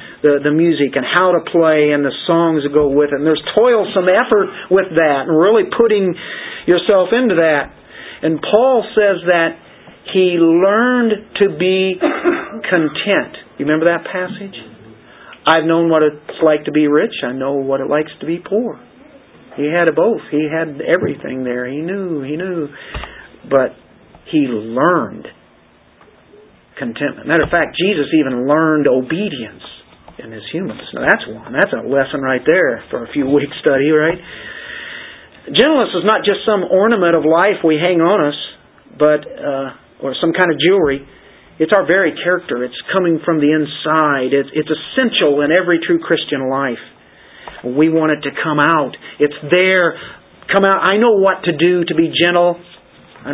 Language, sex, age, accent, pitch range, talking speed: English, male, 50-69, American, 145-185 Hz, 170 wpm